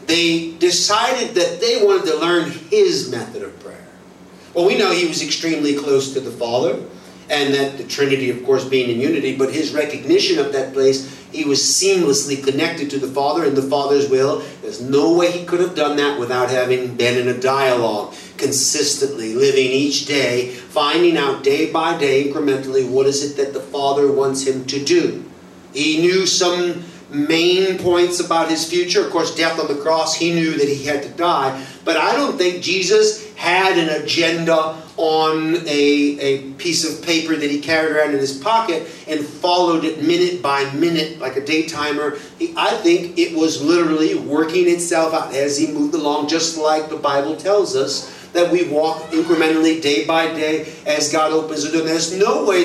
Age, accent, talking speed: 40-59, American, 190 wpm